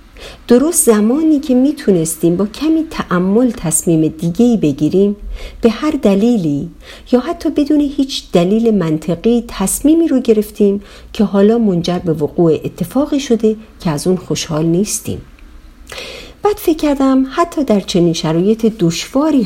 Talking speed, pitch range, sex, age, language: 125 wpm, 170-260 Hz, female, 50-69, Persian